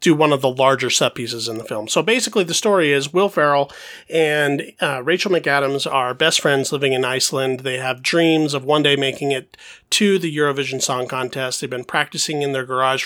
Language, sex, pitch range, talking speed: English, male, 135-170 Hz, 210 wpm